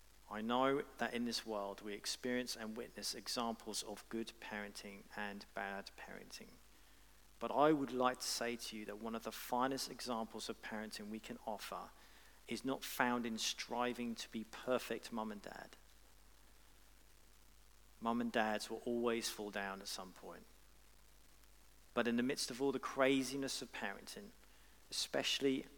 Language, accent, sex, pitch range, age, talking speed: English, British, male, 110-125 Hz, 40-59, 160 wpm